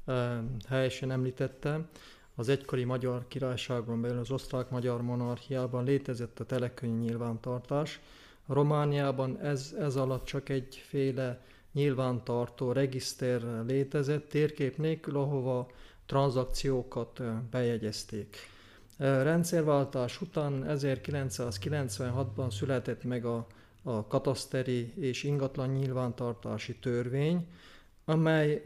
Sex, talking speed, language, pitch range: male, 90 wpm, Hungarian, 120-140 Hz